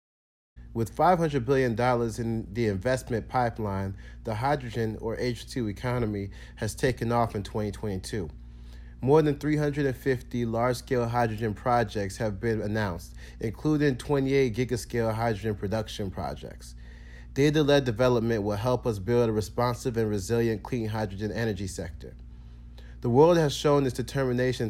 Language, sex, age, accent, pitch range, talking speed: English, male, 30-49, American, 100-125 Hz, 125 wpm